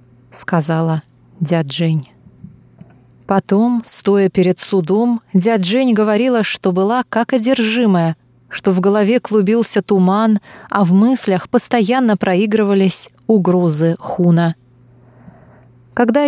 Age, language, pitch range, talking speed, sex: 20-39, Russian, 165-220 Hz, 95 wpm, female